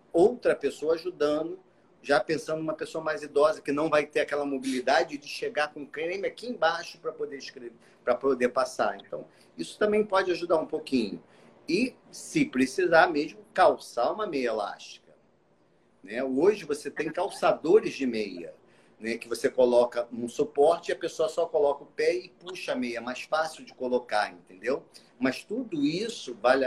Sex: male